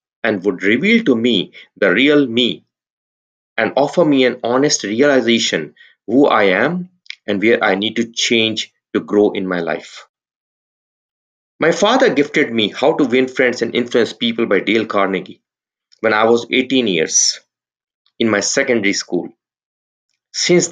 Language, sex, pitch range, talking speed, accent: English, male, 105-145 Hz, 150 wpm, Indian